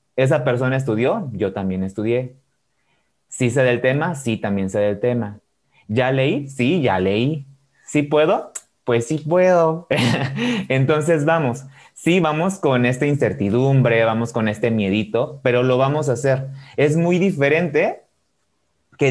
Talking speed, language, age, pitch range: 140 wpm, Spanish, 30-49, 115-140 Hz